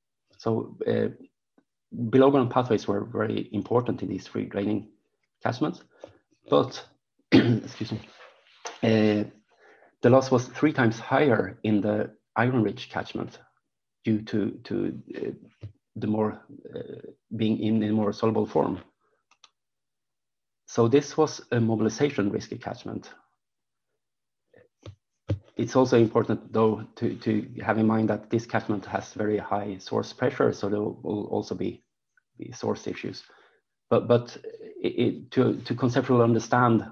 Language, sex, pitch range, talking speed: English, male, 105-125 Hz, 130 wpm